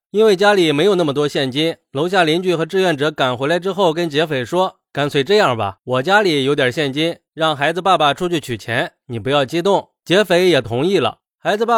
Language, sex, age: Chinese, male, 20-39